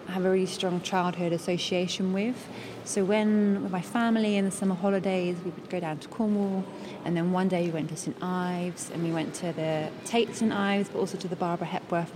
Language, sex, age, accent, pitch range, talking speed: English, female, 20-39, British, 180-205 Hz, 225 wpm